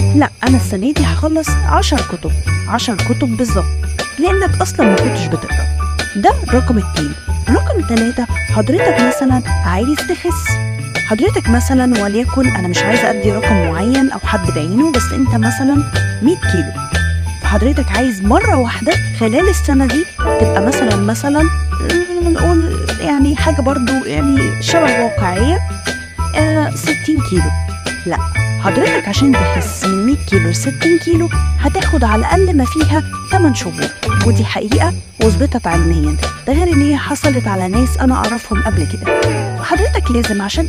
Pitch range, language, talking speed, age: 80-110 Hz, Arabic, 140 wpm, 20-39